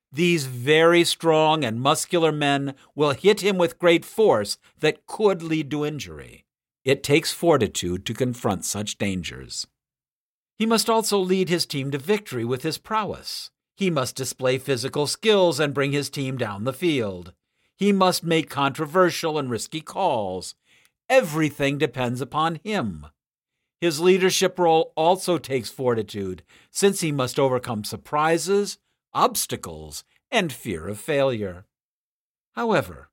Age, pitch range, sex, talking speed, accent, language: 50-69, 135-165 Hz, male, 135 wpm, American, English